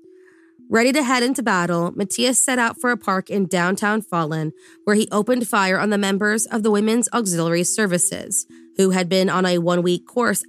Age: 20-39